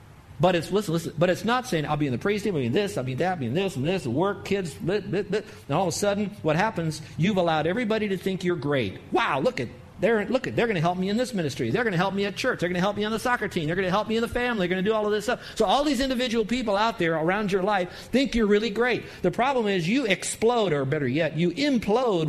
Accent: American